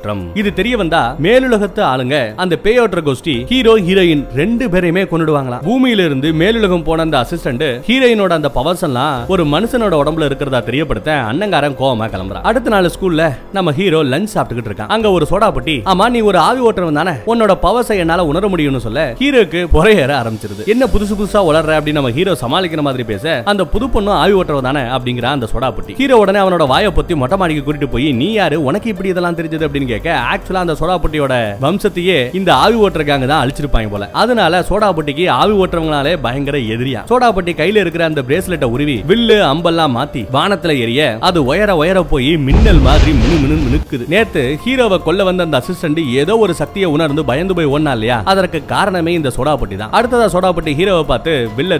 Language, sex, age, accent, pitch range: Tamil, male, 30-49, native, 140-195 Hz